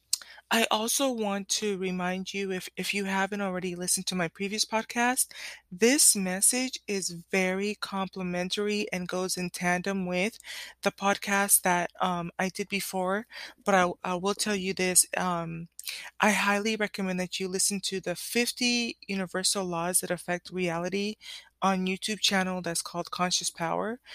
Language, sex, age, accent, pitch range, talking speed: English, female, 20-39, American, 180-210 Hz, 150 wpm